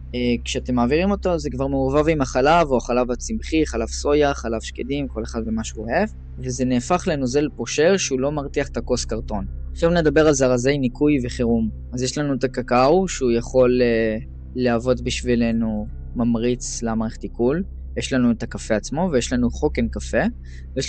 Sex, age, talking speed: female, 10-29, 170 wpm